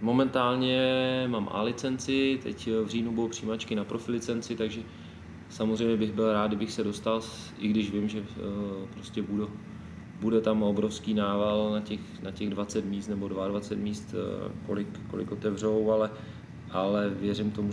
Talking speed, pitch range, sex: 150 wpm, 100-110 Hz, male